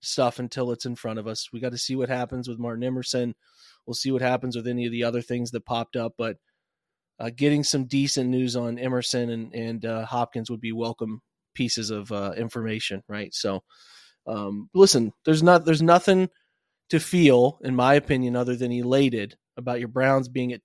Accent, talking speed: American, 200 wpm